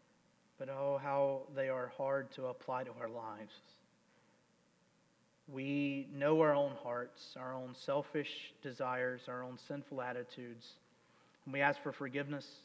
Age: 40-59